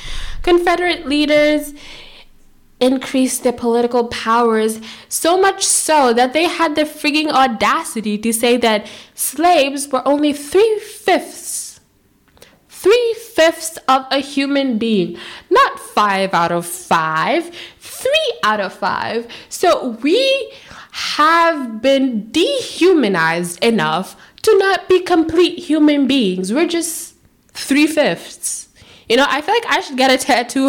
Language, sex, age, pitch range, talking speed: English, female, 10-29, 215-320 Hz, 120 wpm